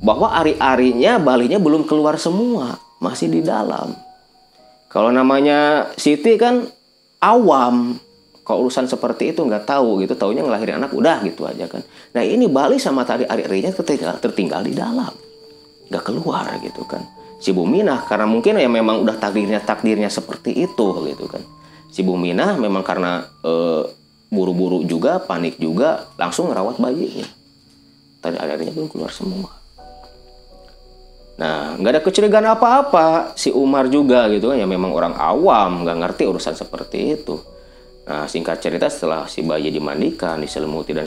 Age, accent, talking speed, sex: 30-49, native, 140 wpm, male